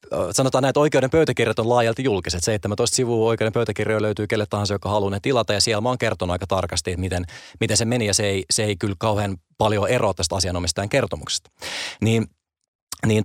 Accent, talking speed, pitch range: native, 205 wpm, 95-120 Hz